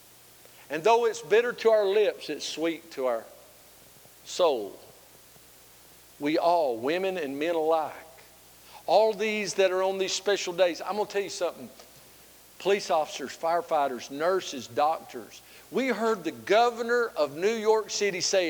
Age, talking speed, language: 50-69, 150 wpm, English